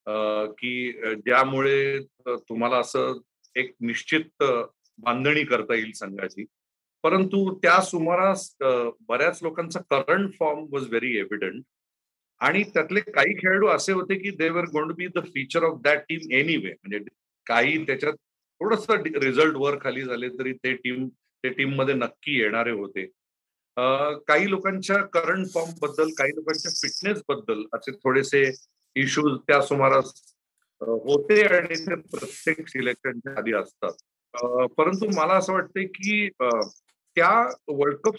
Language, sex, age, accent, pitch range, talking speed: Marathi, male, 40-59, native, 135-185 Hz, 130 wpm